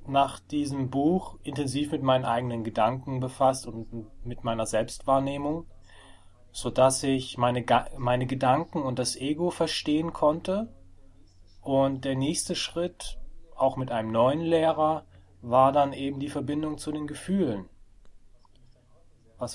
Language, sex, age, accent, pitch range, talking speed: German, male, 30-49, German, 115-140 Hz, 125 wpm